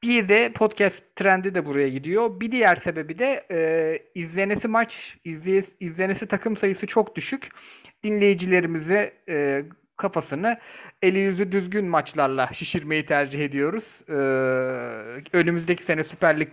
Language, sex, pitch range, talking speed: Turkish, male, 150-210 Hz, 125 wpm